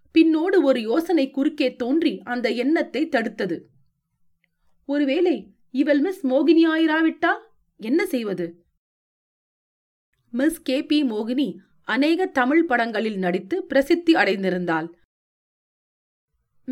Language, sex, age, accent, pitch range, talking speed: Tamil, female, 30-49, native, 205-305 Hz, 35 wpm